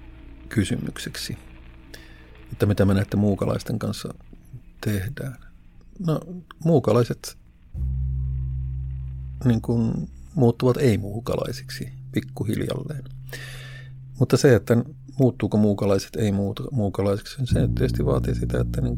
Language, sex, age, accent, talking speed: Finnish, male, 50-69, native, 85 wpm